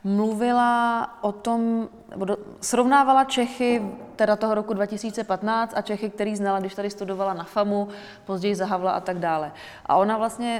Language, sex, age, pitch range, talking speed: Slovak, female, 20-39, 200-225 Hz, 155 wpm